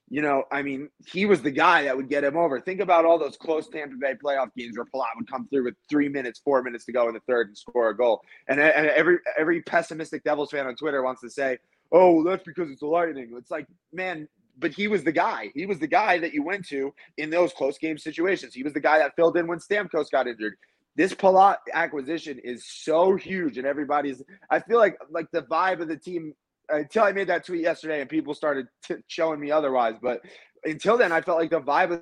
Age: 20-39